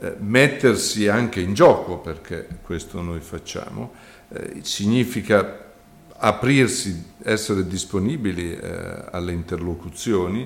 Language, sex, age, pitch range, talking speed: Italian, male, 50-69, 85-115 Hz, 90 wpm